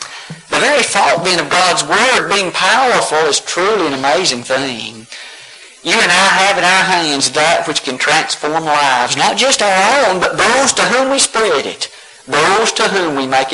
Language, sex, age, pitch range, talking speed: English, male, 50-69, 135-185 Hz, 185 wpm